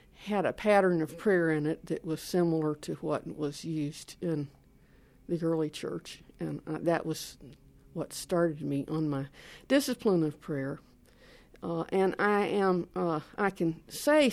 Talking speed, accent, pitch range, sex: 160 wpm, American, 150-180 Hz, female